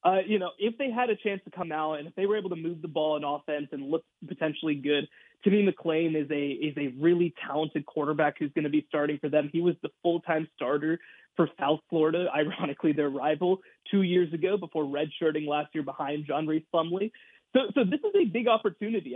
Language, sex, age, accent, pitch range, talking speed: English, male, 20-39, American, 155-190 Hz, 225 wpm